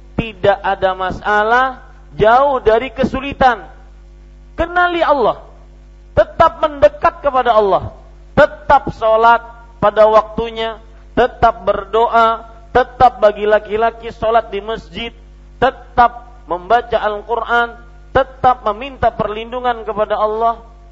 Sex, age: male, 40-59